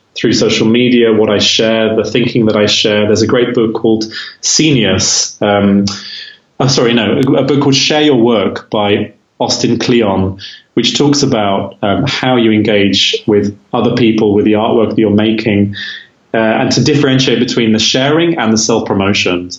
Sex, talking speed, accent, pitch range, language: male, 180 wpm, British, 100-115 Hz, English